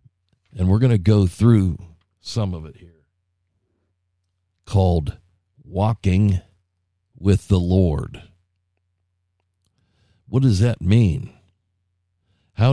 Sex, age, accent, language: male, 50-69, American, English